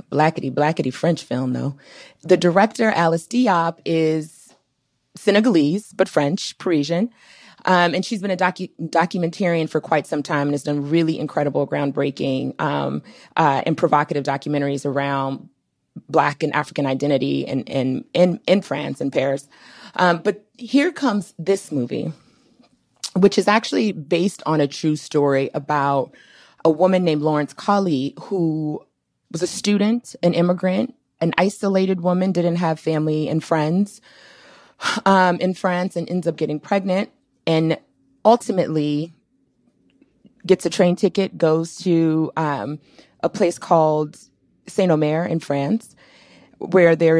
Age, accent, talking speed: 30-49, American, 135 wpm